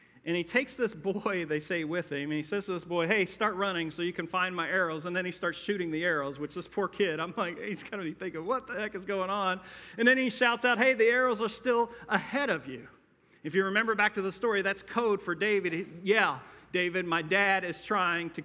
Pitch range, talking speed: 150-195 Hz, 255 wpm